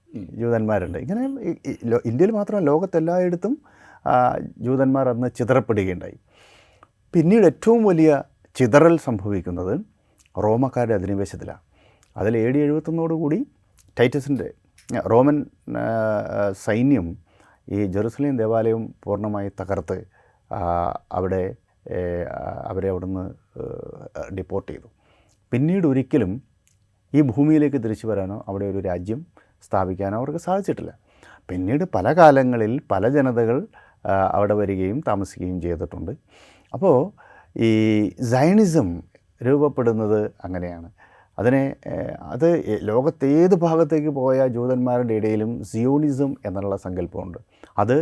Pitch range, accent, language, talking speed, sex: 100-145 Hz, native, Malayalam, 85 wpm, male